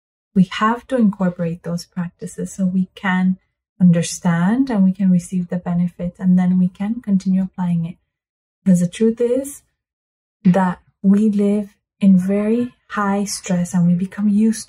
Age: 30-49